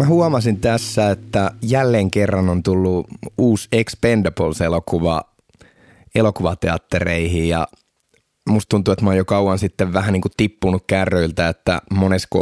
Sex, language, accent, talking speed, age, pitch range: male, Finnish, native, 130 wpm, 20-39, 85-105 Hz